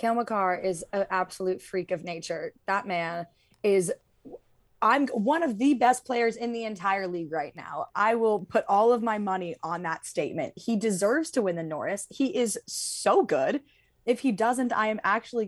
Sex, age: female, 20-39